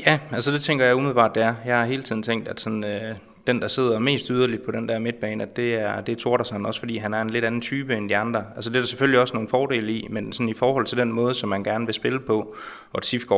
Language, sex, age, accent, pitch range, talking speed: Danish, male, 20-39, native, 110-125 Hz, 300 wpm